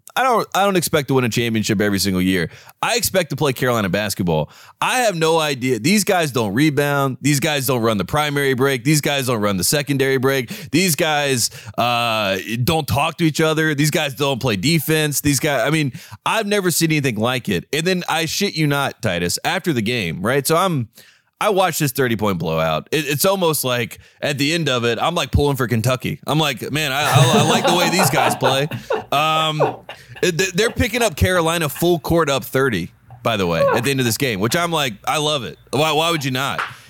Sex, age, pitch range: male, 30-49, 115-160 Hz